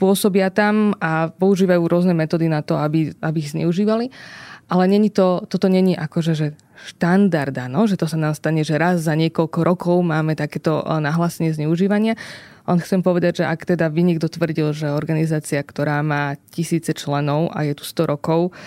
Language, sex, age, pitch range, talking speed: Slovak, female, 20-39, 155-185 Hz, 175 wpm